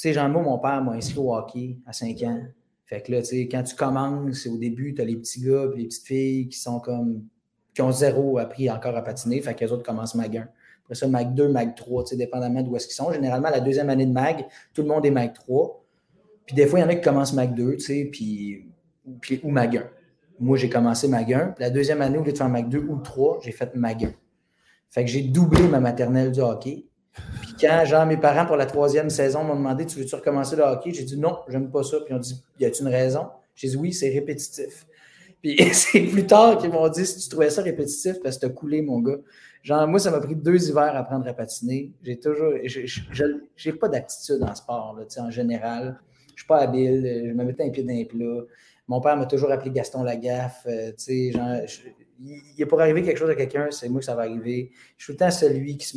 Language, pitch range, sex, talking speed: French, 120-150 Hz, male, 265 wpm